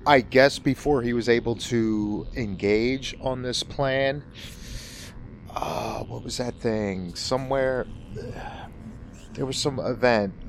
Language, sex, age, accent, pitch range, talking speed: English, male, 30-49, American, 95-125 Hz, 120 wpm